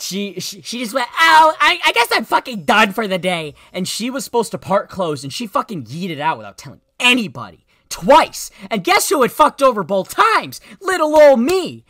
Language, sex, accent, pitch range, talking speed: English, male, American, 125-195 Hz, 215 wpm